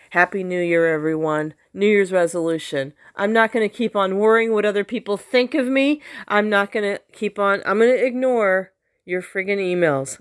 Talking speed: 195 wpm